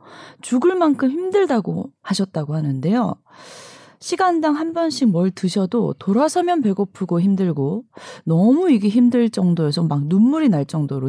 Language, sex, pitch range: Korean, female, 165-260 Hz